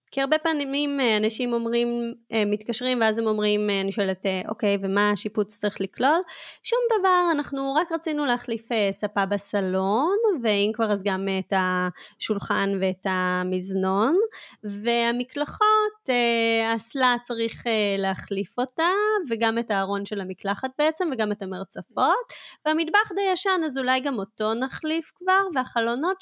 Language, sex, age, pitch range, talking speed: Hebrew, female, 20-39, 200-275 Hz, 130 wpm